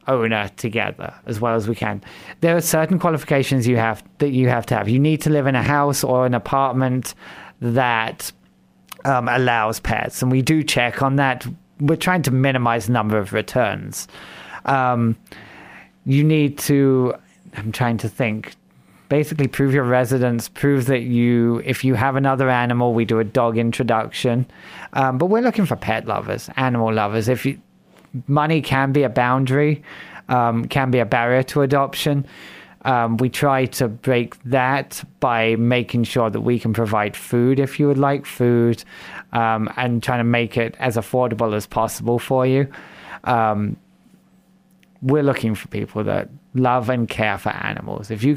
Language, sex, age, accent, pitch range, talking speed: English, male, 30-49, British, 115-135 Hz, 170 wpm